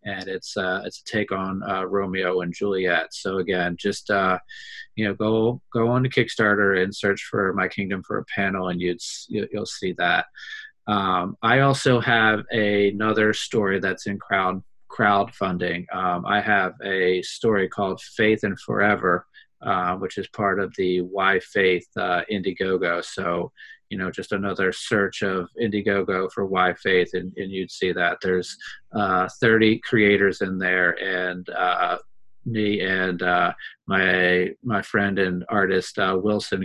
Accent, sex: American, male